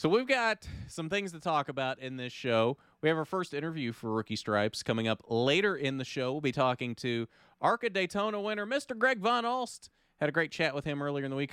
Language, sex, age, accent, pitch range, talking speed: English, male, 30-49, American, 115-160 Hz, 240 wpm